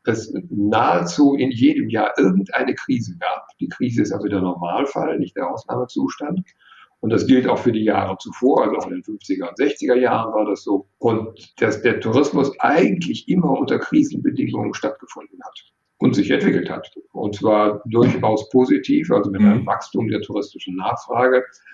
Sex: male